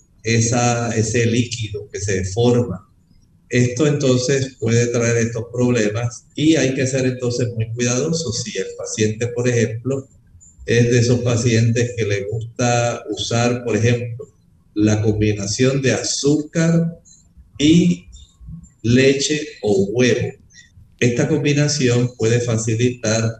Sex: male